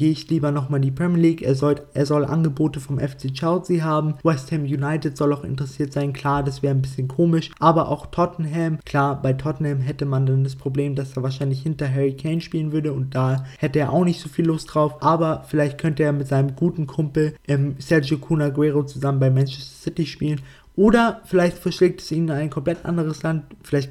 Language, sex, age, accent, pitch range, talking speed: German, male, 20-39, German, 140-155 Hz, 215 wpm